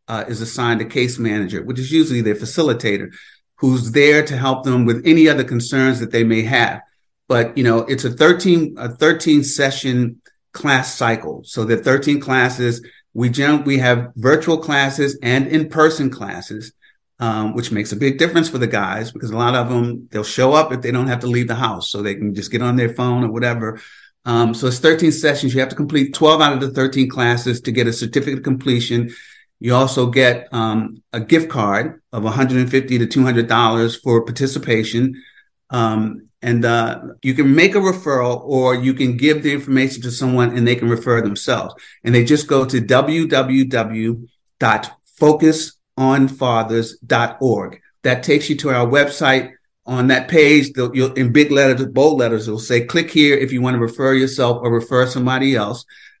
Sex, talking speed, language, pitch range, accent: male, 185 wpm, English, 115-135 Hz, American